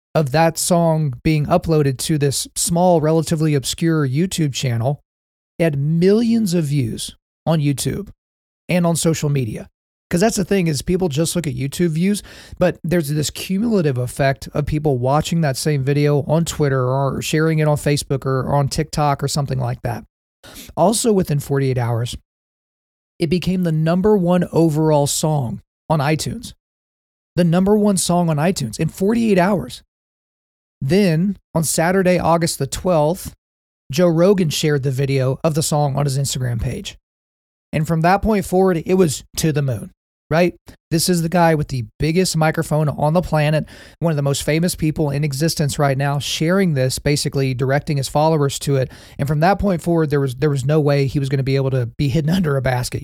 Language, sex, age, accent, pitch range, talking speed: English, male, 40-59, American, 135-170 Hz, 185 wpm